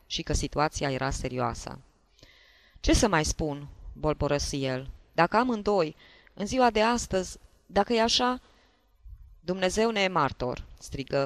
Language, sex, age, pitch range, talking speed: Romanian, female, 20-39, 145-235 Hz, 135 wpm